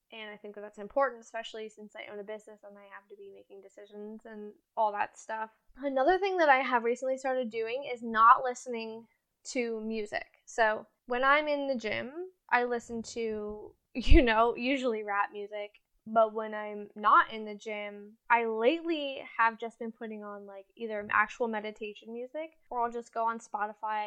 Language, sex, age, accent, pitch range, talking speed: English, female, 10-29, American, 215-255 Hz, 185 wpm